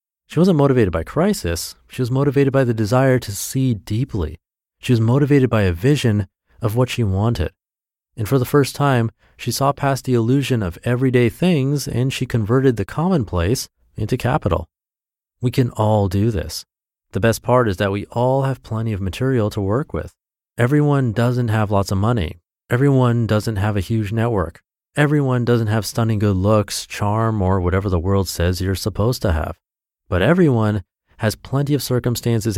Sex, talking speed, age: male, 180 wpm, 30-49